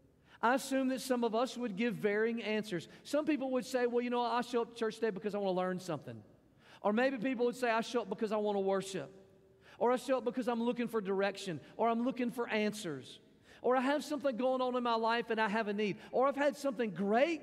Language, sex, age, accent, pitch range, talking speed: English, male, 40-59, American, 195-255 Hz, 260 wpm